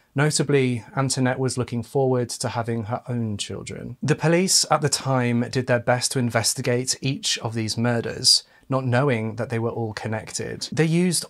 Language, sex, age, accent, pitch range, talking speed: English, male, 30-49, British, 115-140 Hz, 175 wpm